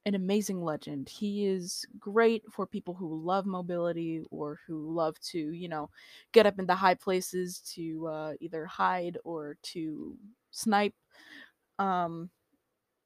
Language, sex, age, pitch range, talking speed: English, female, 20-39, 170-215 Hz, 140 wpm